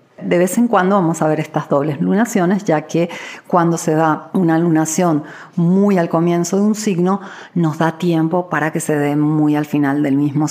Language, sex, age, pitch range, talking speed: Spanish, female, 40-59, 145-175 Hz, 200 wpm